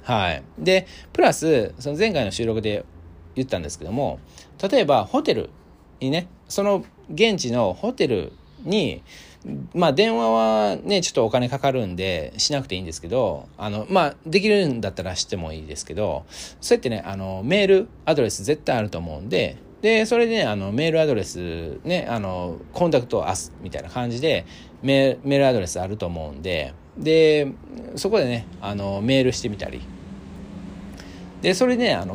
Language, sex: Japanese, male